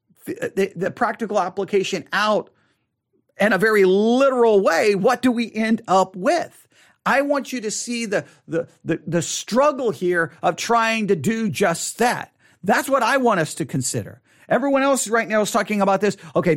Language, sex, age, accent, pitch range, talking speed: English, male, 40-59, American, 170-230 Hz, 180 wpm